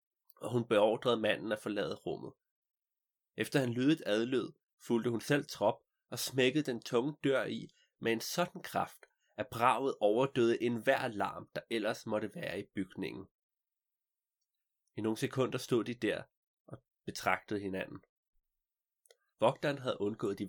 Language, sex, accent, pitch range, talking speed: Danish, male, native, 105-140 Hz, 145 wpm